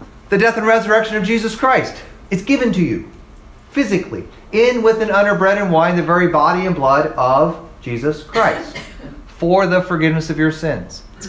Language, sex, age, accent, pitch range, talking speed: English, male, 40-59, American, 155-205 Hz, 175 wpm